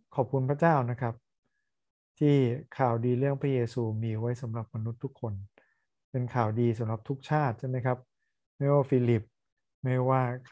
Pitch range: 115-130 Hz